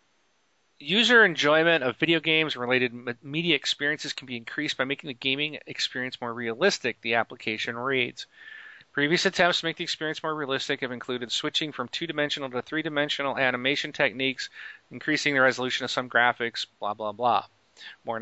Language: English